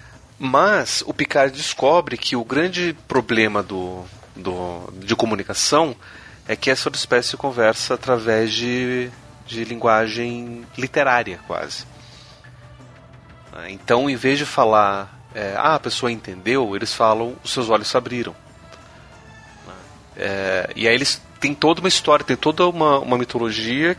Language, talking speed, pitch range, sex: Portuguese, 125 wpm, 110-140 Hz, male